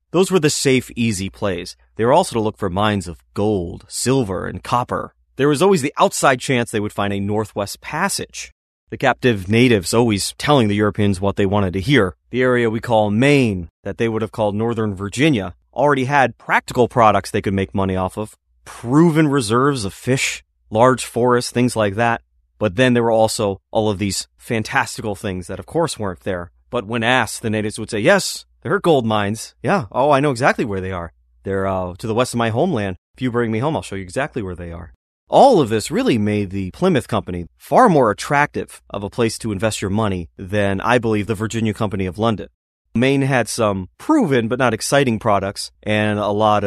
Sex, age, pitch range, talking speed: male, 30-49, 95-120 Hz, 210 wpm